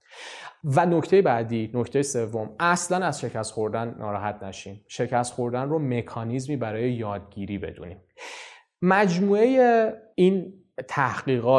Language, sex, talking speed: English, male, 110 wpm